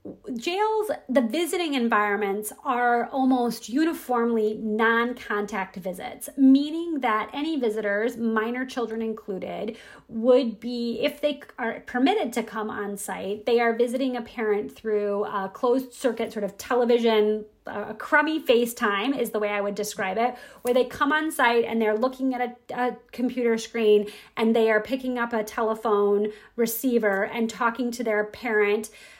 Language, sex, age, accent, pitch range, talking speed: English, female, 30-49, American, 210-250 Hz, 150 wpm